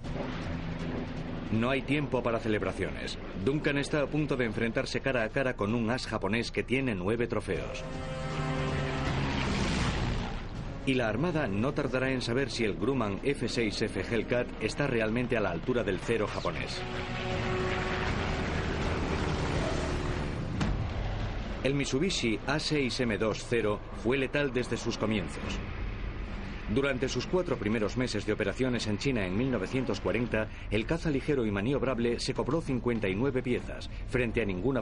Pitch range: 100-130 Hz